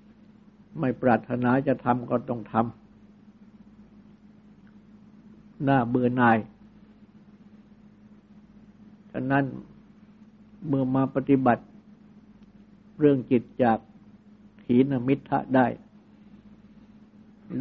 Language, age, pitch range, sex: Thai, 60-79, 135-210 Hz, male